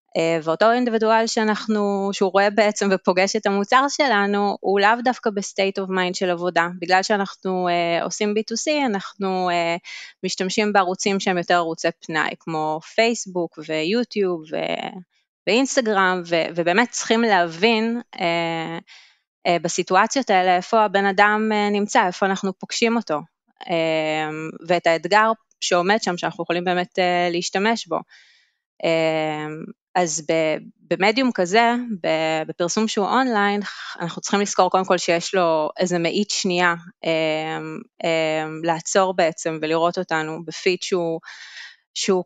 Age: 20-39